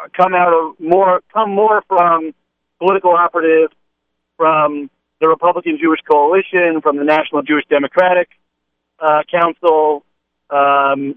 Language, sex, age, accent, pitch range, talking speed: English, male, 50-69, American, 130-160 Hz, 120 wpm